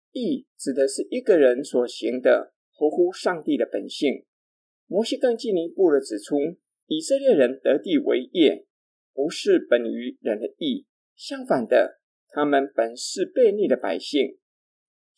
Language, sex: Chinese, male